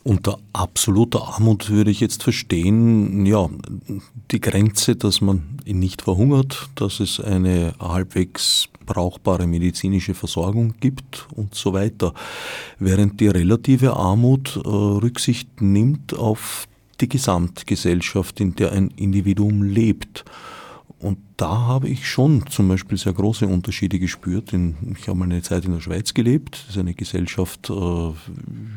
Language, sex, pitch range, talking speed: German, male, 90-115 Hz, 140 wpm